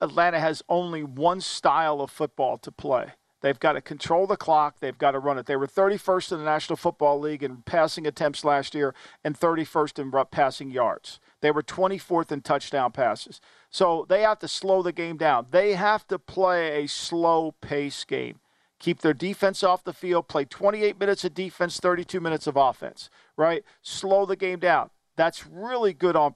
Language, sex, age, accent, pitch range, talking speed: English, male, 50-69, American, 150-190 Hz, 190 wpm